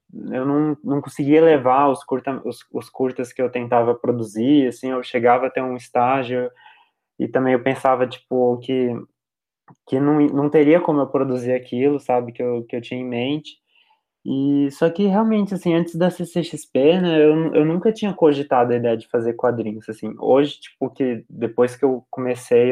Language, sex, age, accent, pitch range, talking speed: Portuguese, male, 20-39, Brazilian, 120-145 Hz, 180 wpm